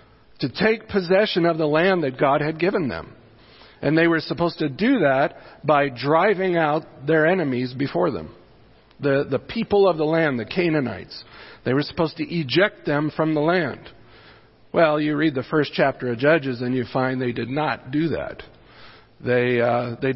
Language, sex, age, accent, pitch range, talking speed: English, male, 50-69, American, 130-165 Hz, 180 wpm